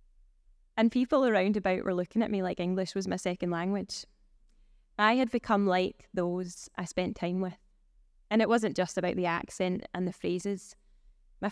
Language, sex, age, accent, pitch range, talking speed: English, female, 20-39, British, 190-225 Hz, 175 wpm